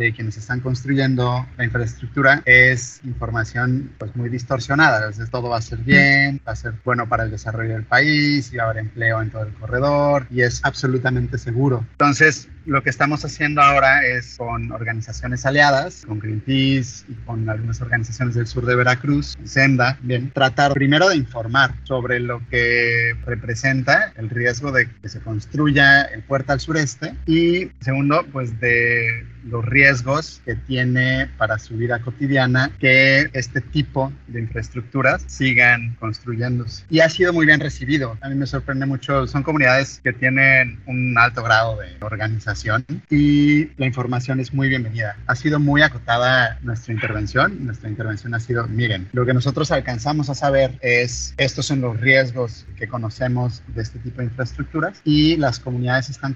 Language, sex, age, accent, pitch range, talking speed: Spanish, male, 30-49, Mexican, 115-135 Hz, 165 wpm